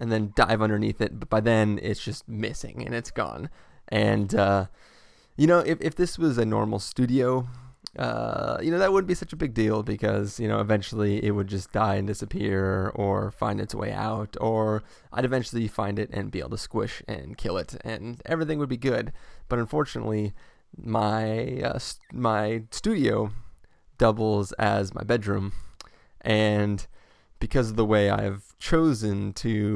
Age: 20-39